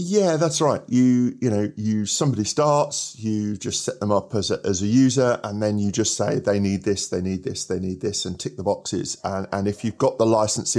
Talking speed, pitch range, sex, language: 245 wpm, 105-145 Hz, male, English